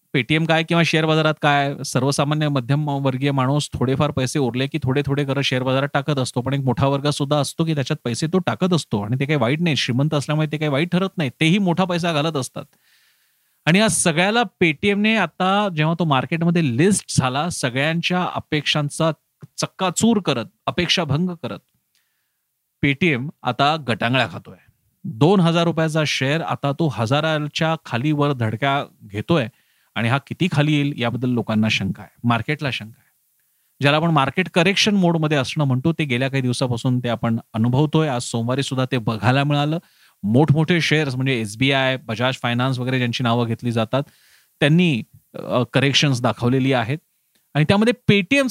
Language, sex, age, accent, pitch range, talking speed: Marathi, male, 30-49, native, 130-170 Hz, 90 wpm